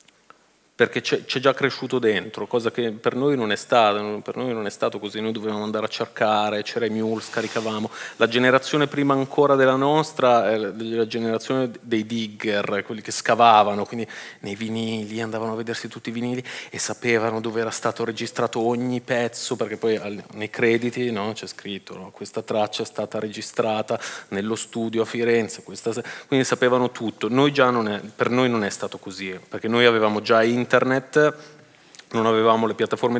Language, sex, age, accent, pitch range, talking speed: English, male, 30-49, Italian, 105-125 Hz, 175 wpm